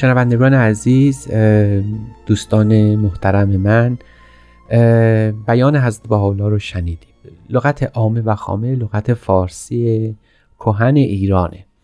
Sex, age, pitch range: male, 30-49, 100-120 Hz